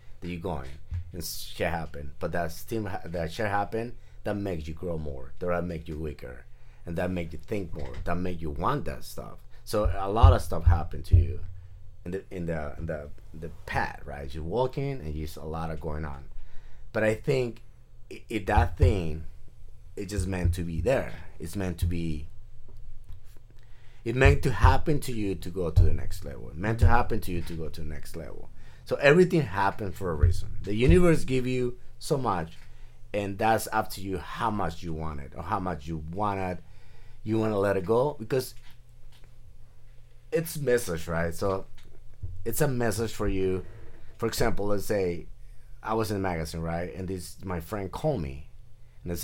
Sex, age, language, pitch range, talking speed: male, 30-49, English, 80-110 Hz, 200 wpm